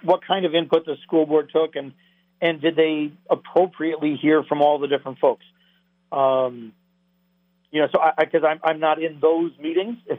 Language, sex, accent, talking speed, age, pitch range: English, male, American, 195 wpm, 50-69, 140-180 Hz